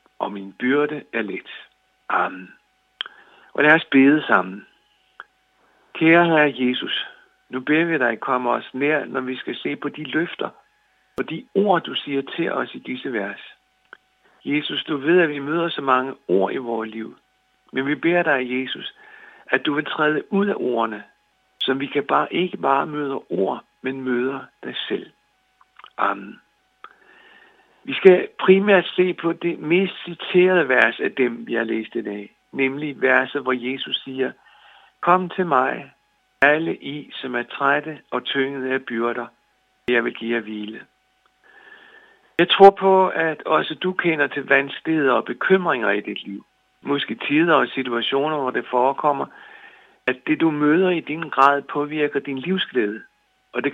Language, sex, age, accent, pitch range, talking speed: Danish, male, 60-79, native, 130-170 Hz, 165 wpm